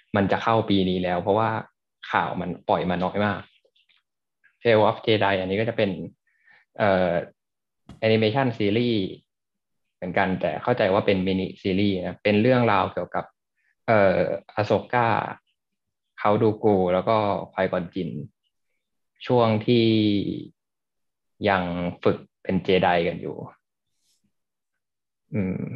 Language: Thai